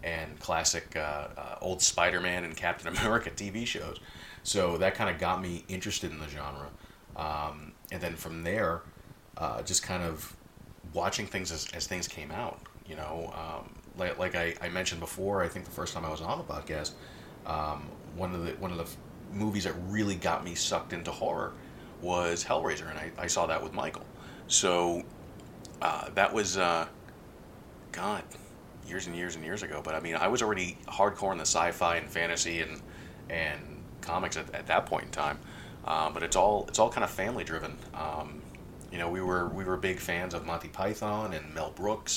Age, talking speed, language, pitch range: 30-49, 195 wpm, English, 80-95 Hz